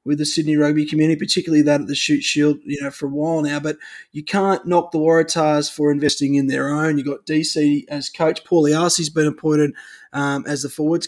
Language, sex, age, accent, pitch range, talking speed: English, male, 20-39, Australian, 150-180 Hz, 220 wpm